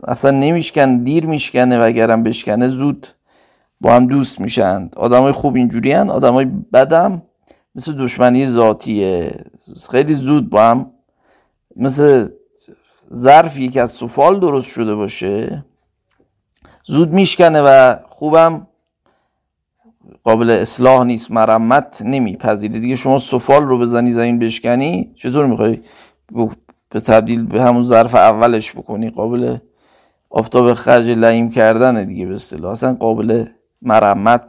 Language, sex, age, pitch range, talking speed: Persian, male, 50-69, 115-140 Hz, 115 wpm